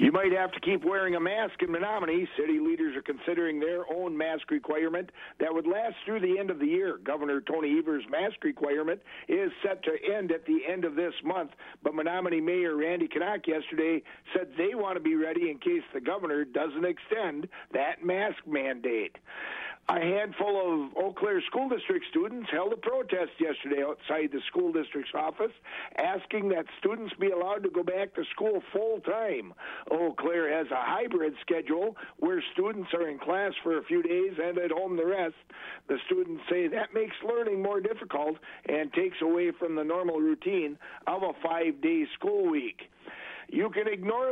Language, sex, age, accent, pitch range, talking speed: English, male, 60-79, American, 160-265 Hz, 185 wpm